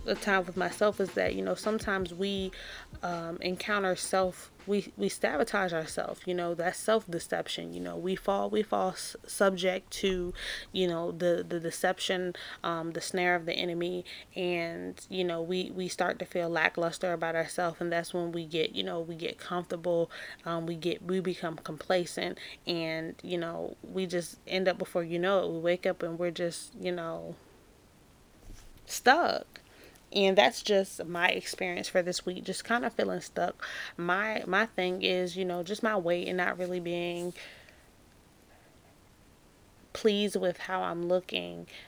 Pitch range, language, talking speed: 170-190 Hz, English, 170 wpm